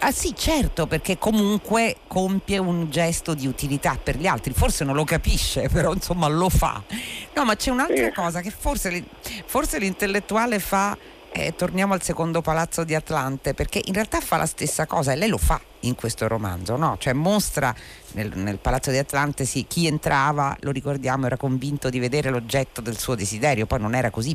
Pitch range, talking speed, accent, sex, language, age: 130-190 Hz, 185 wpm, native, female, Italian, 50-69